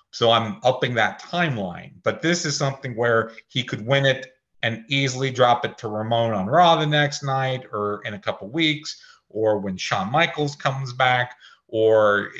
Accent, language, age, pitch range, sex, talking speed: American, English, 40-59, 110-140 Hz, male, 185 wpm